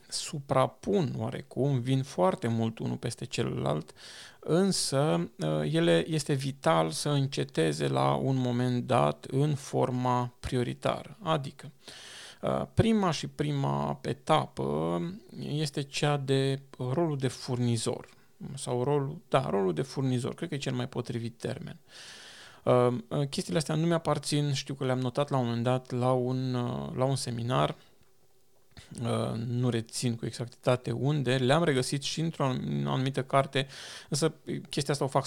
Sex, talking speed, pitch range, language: male, 130 wpm, 120-145 Hz, Romanian